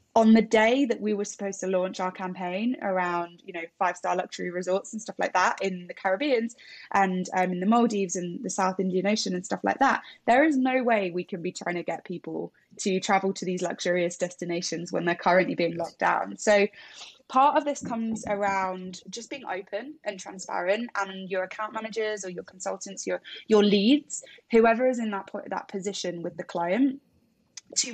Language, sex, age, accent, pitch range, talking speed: English, female, 10-29, British, 185-225 Hz, 200 wpm